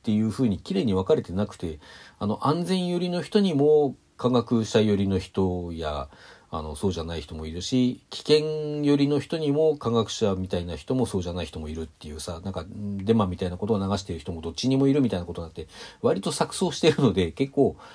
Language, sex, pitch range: Japanese, male, 90-140 Hz